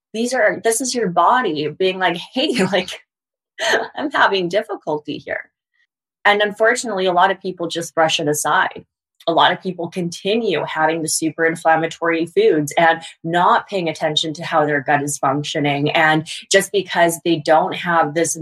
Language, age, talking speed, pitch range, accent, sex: English, 20-39, 165 wpm, 160-210 Hz, American, female